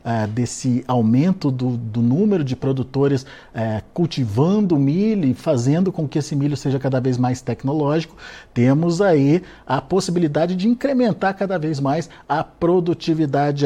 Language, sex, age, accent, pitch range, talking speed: Portuguese, male, 50-69, Brazilian, 130-170 Hz, 135 wpm